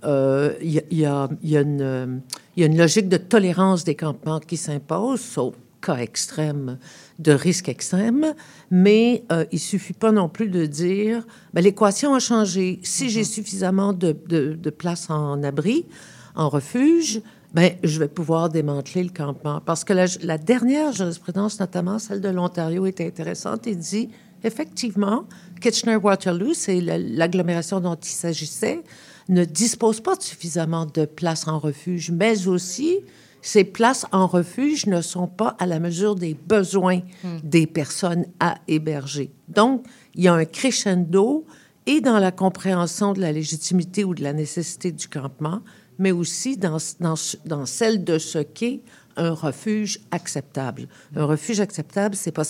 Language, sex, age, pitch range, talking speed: French, female, 50-69, 160-205 Hz, 160 wpm